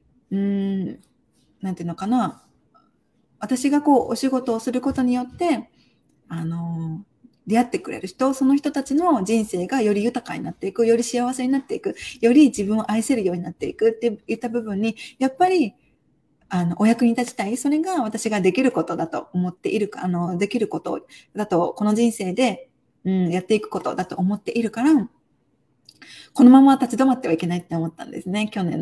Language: Japanese